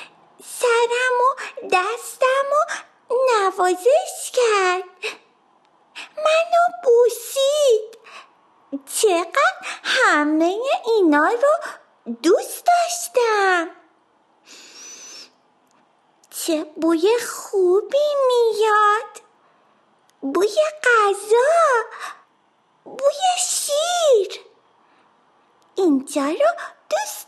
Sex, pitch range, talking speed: female, 325-445 Hz, 55 wpm